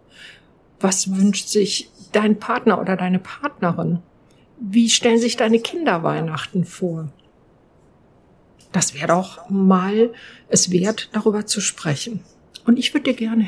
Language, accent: German, German